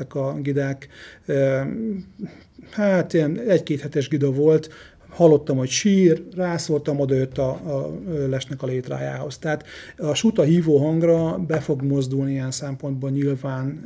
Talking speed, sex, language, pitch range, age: 130 wpm, male, Hungarian, 140-170 Hz, 30-49